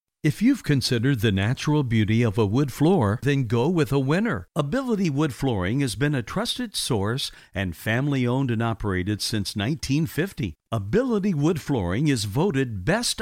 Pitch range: 115-150 Hz